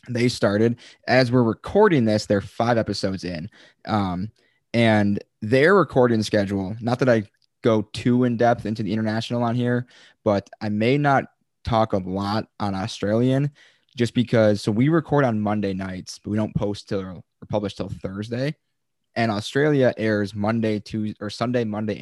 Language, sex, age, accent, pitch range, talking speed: English, male, 20-39, American, 105-125 Hz, 165 wpm